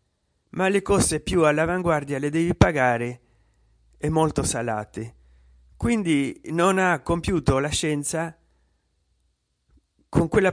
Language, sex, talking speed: Italian, male, 110 wpm